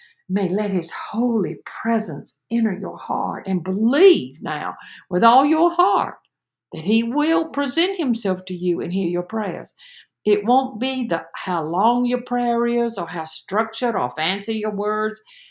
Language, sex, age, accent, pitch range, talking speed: English, female, 60-79, American, 170-220 Hz, 160 wpm